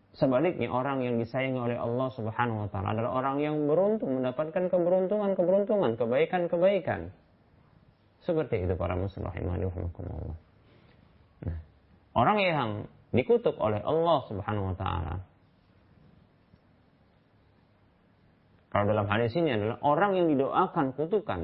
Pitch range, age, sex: 100-160 Hz, 30-49, male